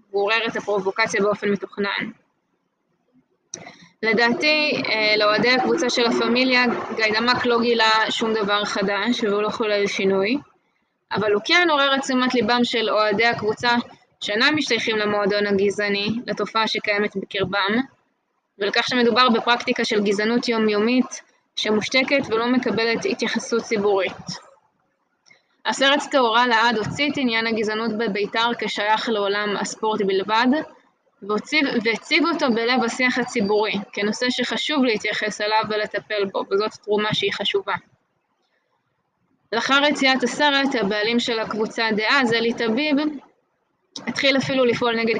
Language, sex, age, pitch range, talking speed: Hebrew, female, 20-39, 210-245 Hz, 115 wpm